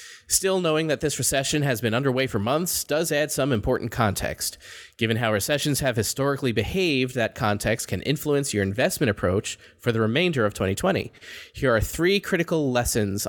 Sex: male